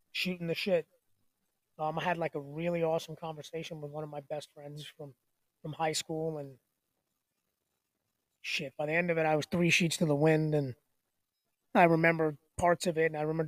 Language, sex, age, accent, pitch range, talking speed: English, male, 20-39, American, 145-165 Hz, 195 wpm